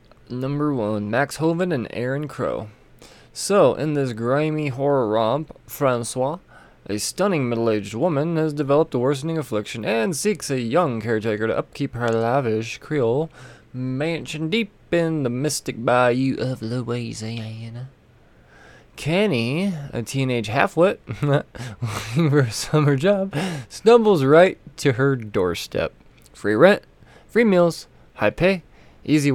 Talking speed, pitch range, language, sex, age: 125 wpm, 115-160 Hz, English, male, 20-39